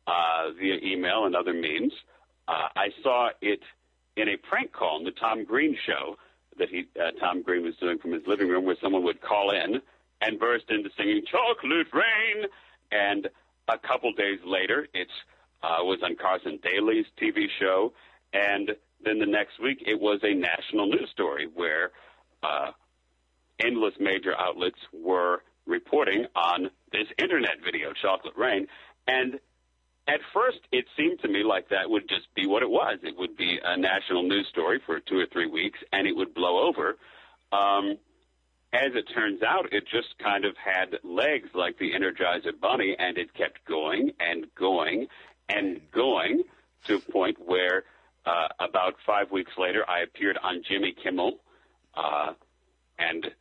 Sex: male